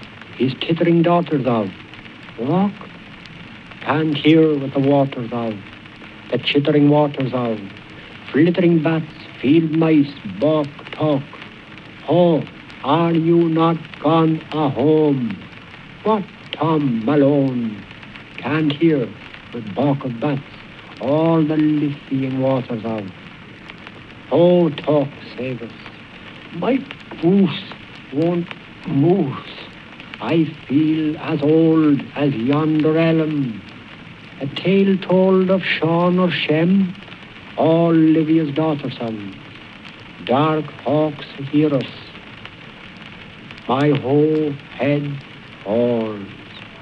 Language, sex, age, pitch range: Turkish, male, 60-79, 135-160 Hz